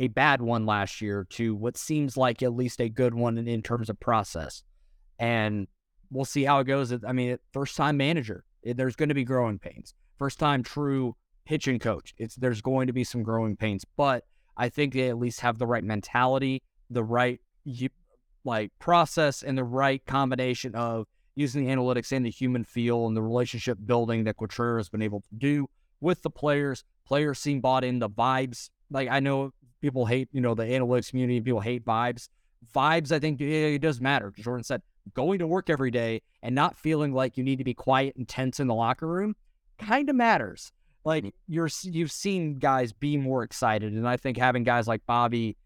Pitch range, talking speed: 115-140 Hz, 205 wpm